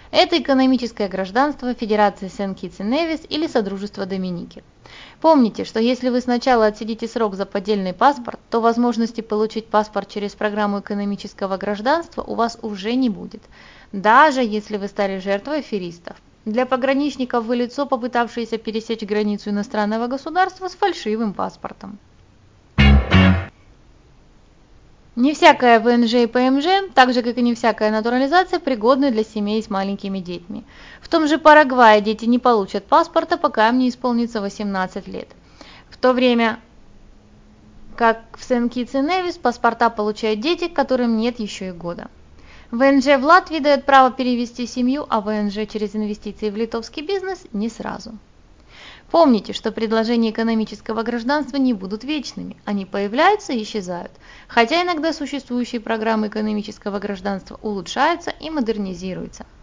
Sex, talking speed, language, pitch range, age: female, 135 wpm, Russian, 205-265 Hz, 20-39